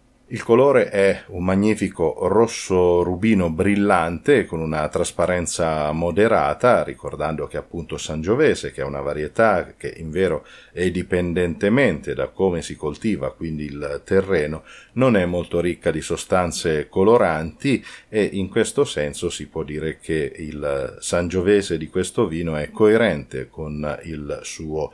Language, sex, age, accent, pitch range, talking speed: Italian, male, 40-59, native, 80-95 Hz, 135 wpm